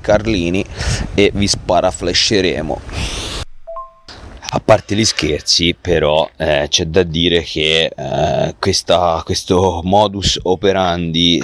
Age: 30-49